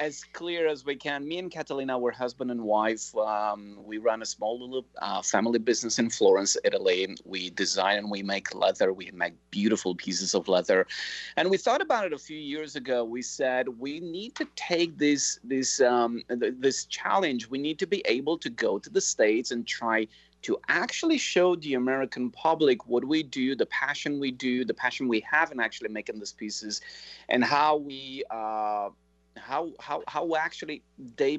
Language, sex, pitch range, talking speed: English, male, 105-145 Hz, 195 wpm